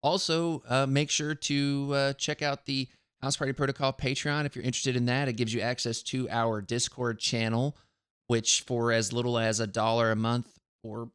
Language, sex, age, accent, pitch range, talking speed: English, male, 20-39, American, 115-135 Hz, 195 wpm